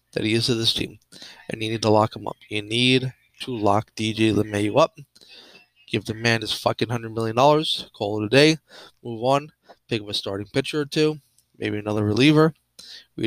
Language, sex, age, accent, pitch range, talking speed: English, male, 20-39, American, 105-135 Hz, 200 wpm